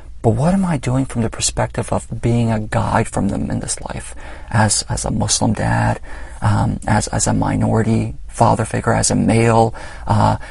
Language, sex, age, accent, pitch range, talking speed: English, male, 40-59, American, 105-125 Hz, 190 wpm